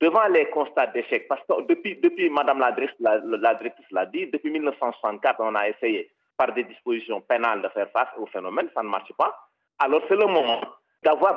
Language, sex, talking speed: French, male, 200 wpm